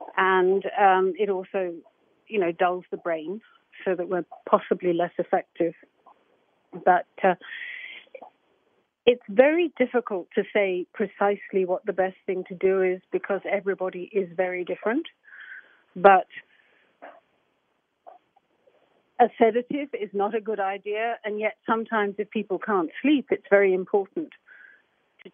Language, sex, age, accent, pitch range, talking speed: English, female, 50-69, British, 180-220 Hz, 130 wpm